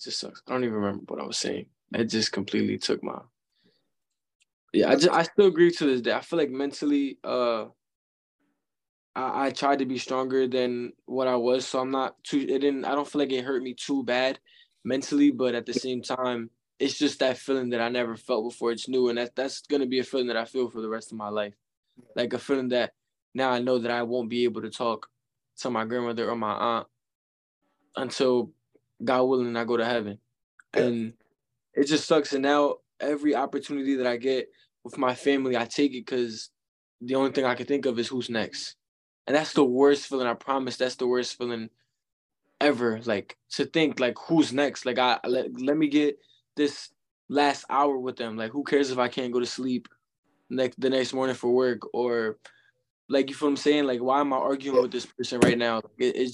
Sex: male